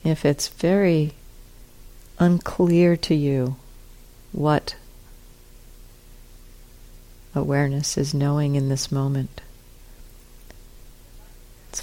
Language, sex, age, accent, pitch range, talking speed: English, female, 50-69, American, 130-165 Hz, 70 wpm